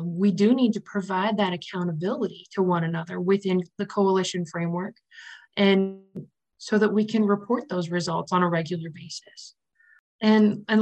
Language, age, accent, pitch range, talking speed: Polish, 20-39, American, 175-215 Hz, 155 wpm